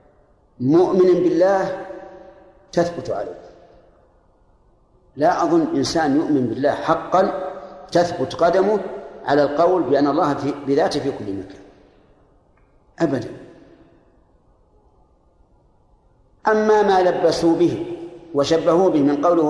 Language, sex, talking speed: Arabic, male, 90 wpm